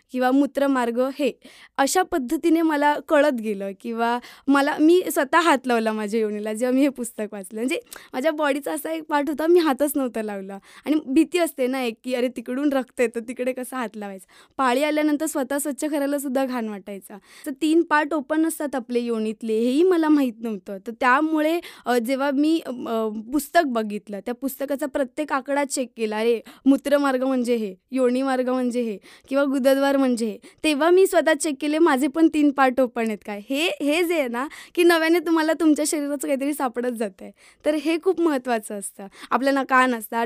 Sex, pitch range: female, 235-300 Hz